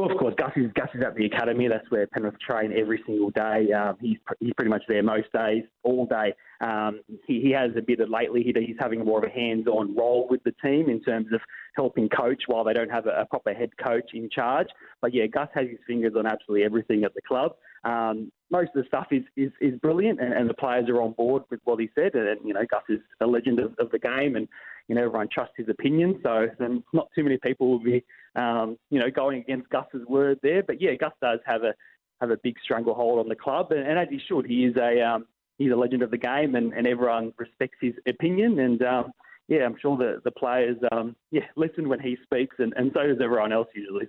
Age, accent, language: 20-39, Australian, English